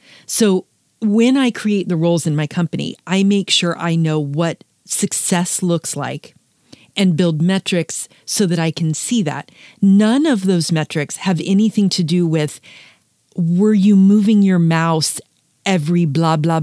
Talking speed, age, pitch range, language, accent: 160 wpm, 40-59, 160-210 Hz, English, American